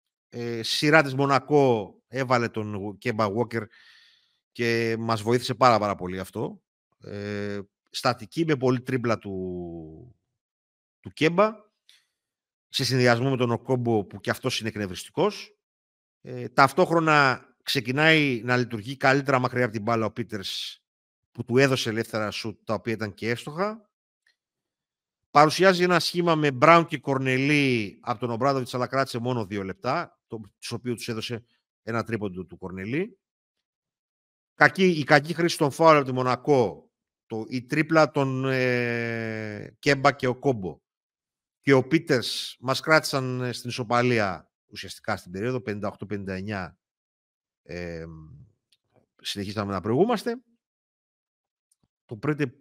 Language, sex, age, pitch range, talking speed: Greek, male, 50-69, 110-140 Hz, 130 wpm